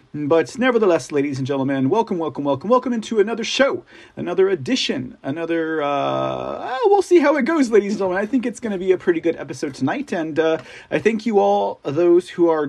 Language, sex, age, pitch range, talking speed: English, male, 40-59, 150-215 Hz, 210 wpm